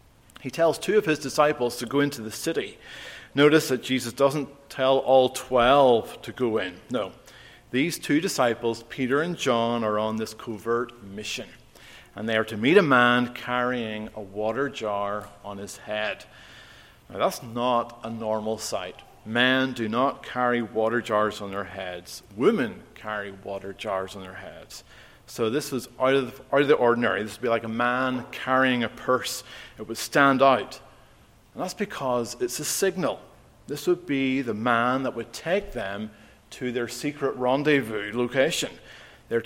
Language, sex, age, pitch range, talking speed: English, male, 40-59, 110-135 Hz, 165 wpm